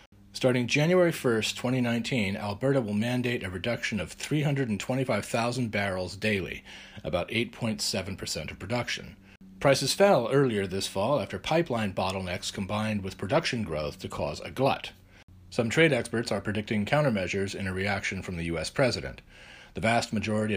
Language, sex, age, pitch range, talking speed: English, male, 40-59, 95-135 Hz, 145 wpm